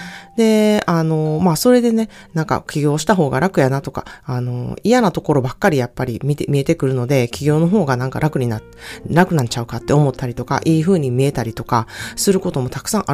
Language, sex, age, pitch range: Japanese, female, 30-49, 130-210 Hz